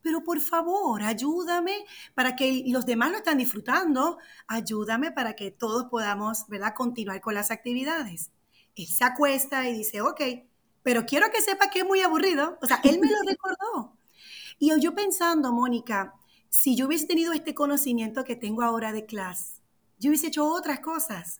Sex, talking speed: female, 170 wpm